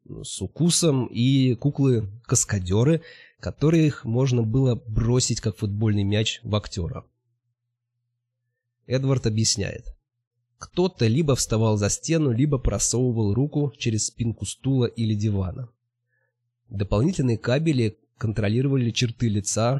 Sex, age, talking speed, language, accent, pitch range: male, 20-39, 105 wpm, Russian, native, 105-130 Hz